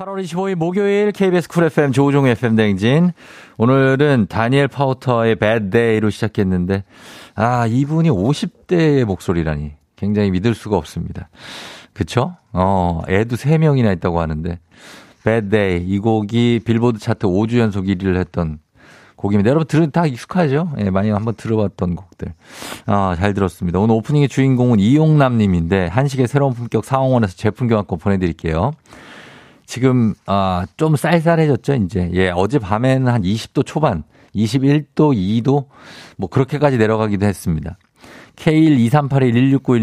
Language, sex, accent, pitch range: Korean, male, native, 100-145 Hz